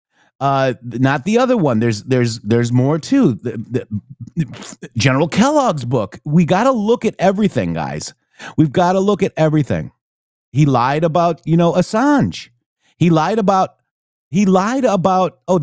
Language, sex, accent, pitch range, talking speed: English, male, American, 120-185 Hz, 155 wpm